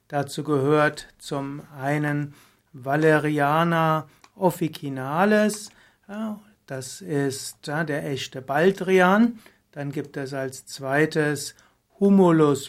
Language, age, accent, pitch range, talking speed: German, 60-79, German, 140-185 Hz, 80 wpm